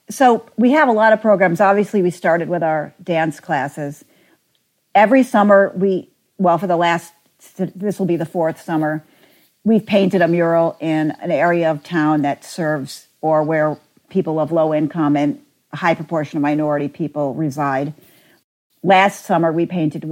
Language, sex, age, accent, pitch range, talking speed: English, female, 50-69, American, 150-175 Hz, 165 wpm